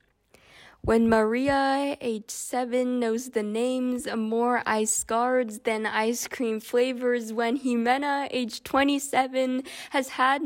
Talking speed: 120 wpm